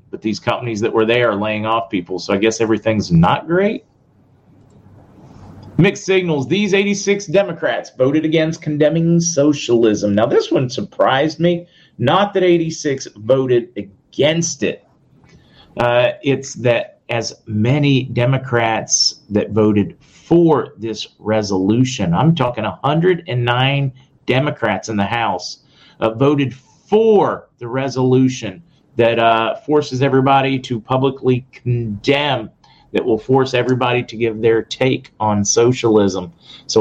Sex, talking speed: male, 125 wpm